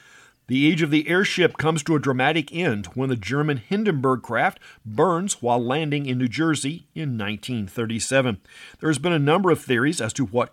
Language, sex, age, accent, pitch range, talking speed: English, male, 50-69, American, 125-160 Hz, 190 wpm